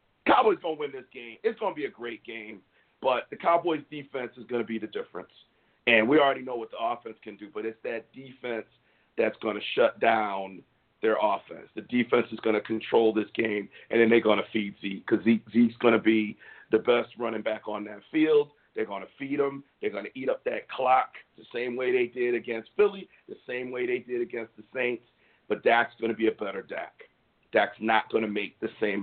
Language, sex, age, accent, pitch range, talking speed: English, male, 50-69, American, 110-140 Hz, 230 wpm